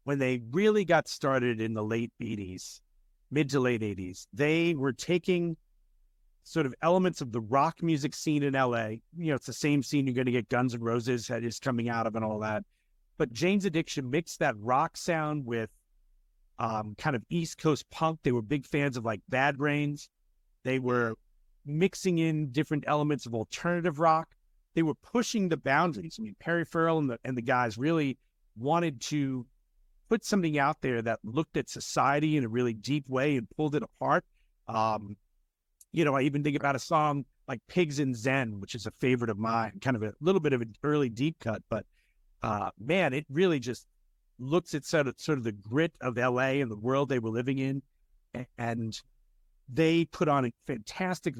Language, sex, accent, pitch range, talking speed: English, male, American, 115-160 Hz, 195 wpm